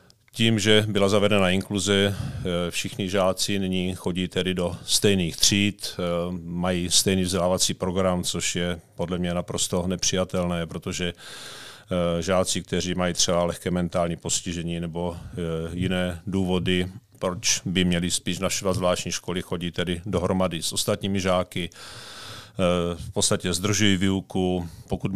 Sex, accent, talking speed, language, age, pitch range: male, native, 125 wpm, Czech, 40-59, 90-95 Hz